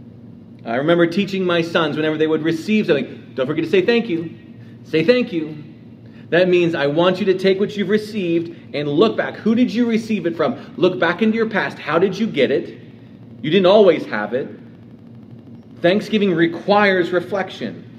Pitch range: 120-190 Hz